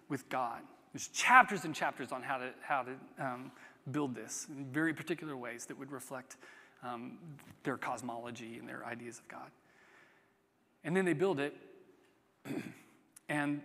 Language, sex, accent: English, male, American